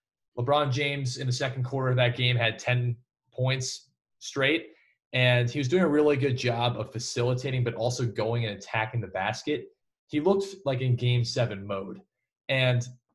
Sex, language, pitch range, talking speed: male, English, 115-140 Hz, 175 wpm